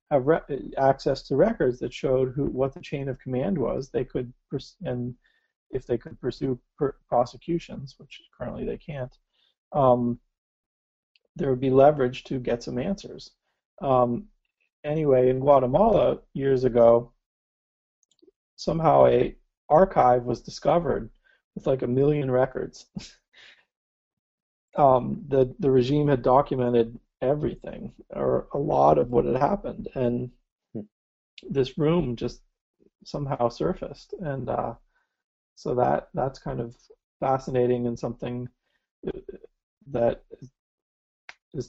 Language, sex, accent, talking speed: English, male, American, 120 wpm